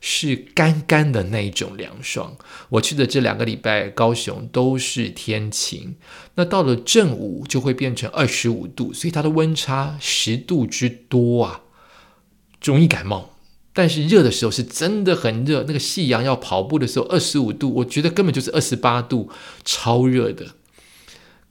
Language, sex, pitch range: Chinese, male, 110-155 Hz